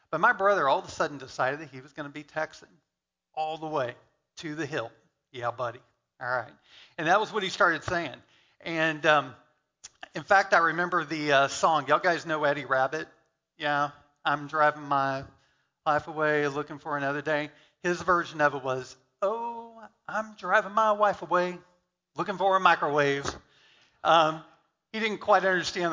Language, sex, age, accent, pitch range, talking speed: English, male, 40-59, American, 140-180 Hz, 175 wpm